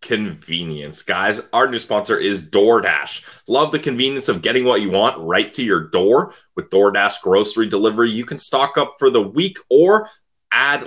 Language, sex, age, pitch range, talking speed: English, male, 30-49, 105-170 Hz, 175 wpm